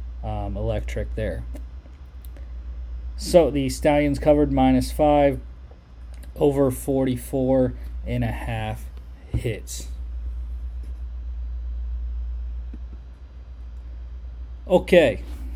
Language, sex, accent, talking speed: English, male, American, 60 wpm